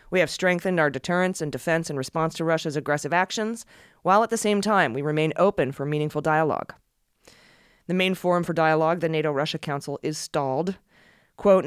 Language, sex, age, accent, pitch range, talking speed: English, female, 20-39, American, 145-180 Hz, 180 wpm